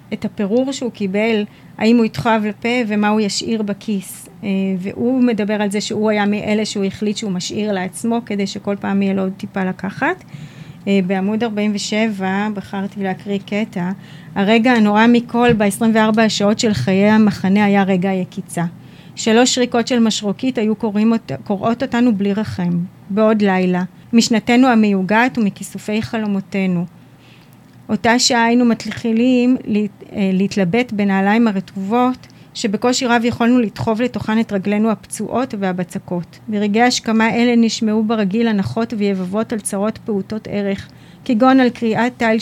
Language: Hebrew